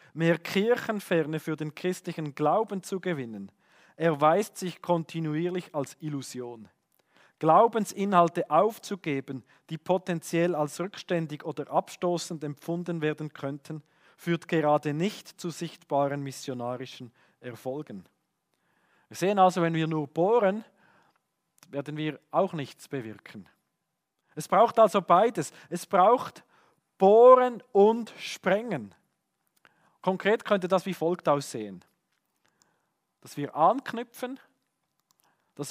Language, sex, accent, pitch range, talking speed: German, male, Austrian, 150-190 Hz, 105 wpm